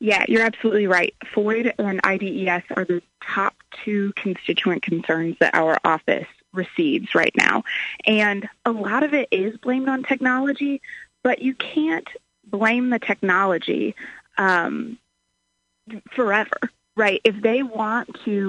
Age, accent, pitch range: 20-39, American, 195-245 Hz